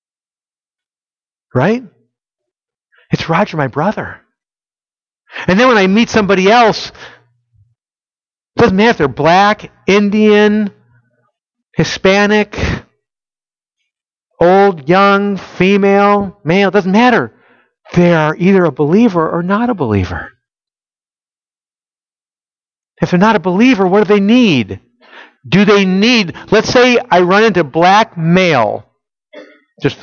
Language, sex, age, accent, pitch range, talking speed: English, male, 50-69, American, 175-230 Hz, 110 wpm